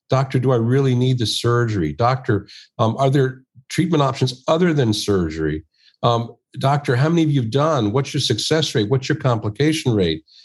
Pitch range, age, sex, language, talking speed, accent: 105-135 Hz, 50-69, male, English, 185 wpm, American